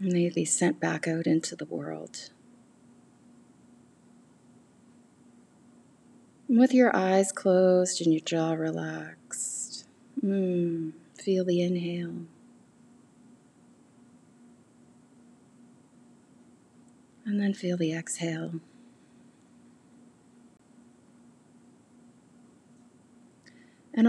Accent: American